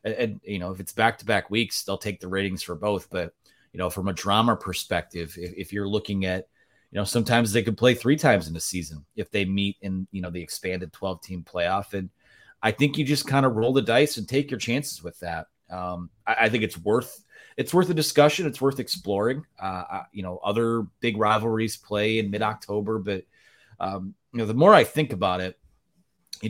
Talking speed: 220 wpm